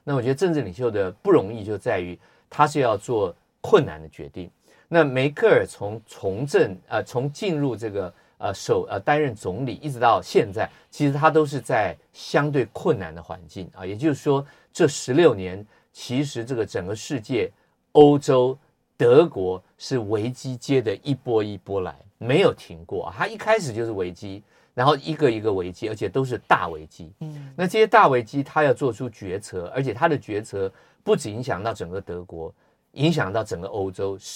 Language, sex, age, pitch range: Chinese, male, 50-69, 100-150 Hz